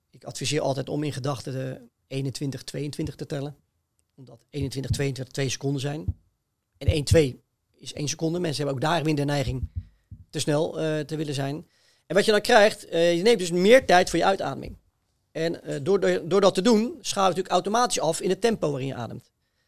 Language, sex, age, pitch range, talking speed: Dutch, male, 40-59, 135-170 Hz, 205 wpm